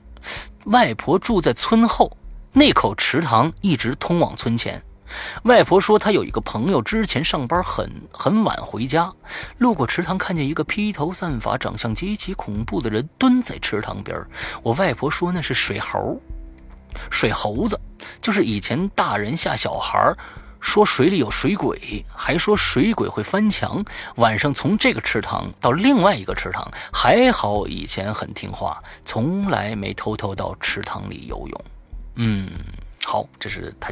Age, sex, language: 30-49, male, Chinese